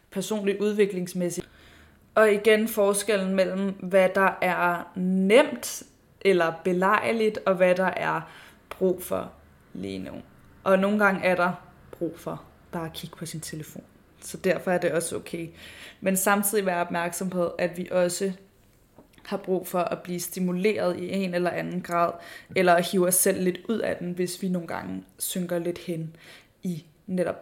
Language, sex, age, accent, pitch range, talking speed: Danish, female, 20-39, native, 180-200 Hz, 165 wpm